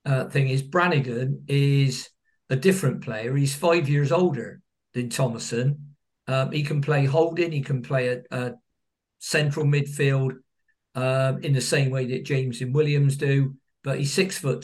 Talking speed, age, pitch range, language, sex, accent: 165 wpm, 50-69, 135-160 Hz, English, male, British